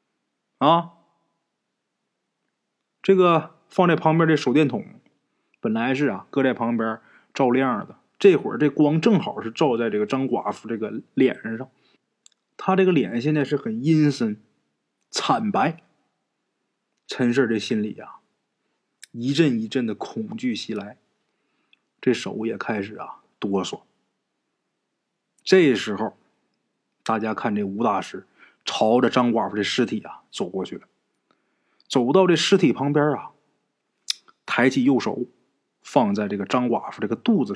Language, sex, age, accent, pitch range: Chinese, male, 20-39, native, 120-190 Hz